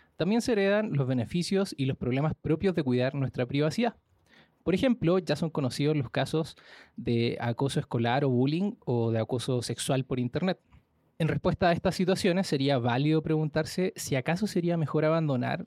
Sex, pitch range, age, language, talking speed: male, 130-165 Hz, 20-39, Spanish, 170 wpm